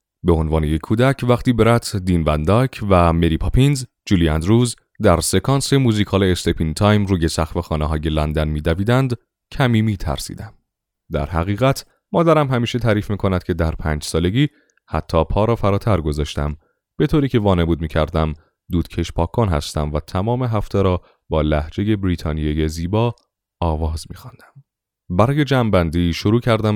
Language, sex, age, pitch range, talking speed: Persian, male, 30-49, 80-110 Hz, 145 wpm